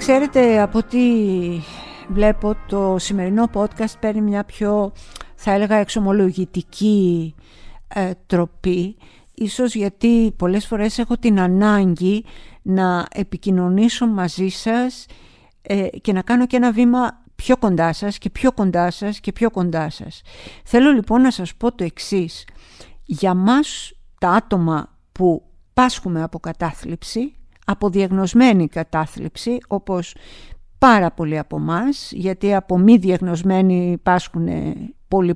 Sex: female